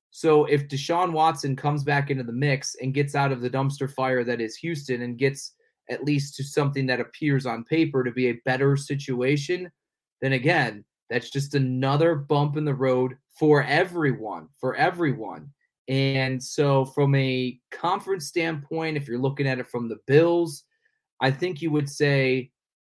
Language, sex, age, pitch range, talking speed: English, male, 30-49, 130-150 Hz, 175 wpm